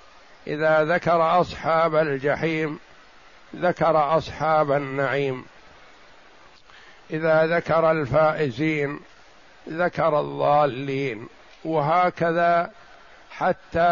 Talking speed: 60 wpm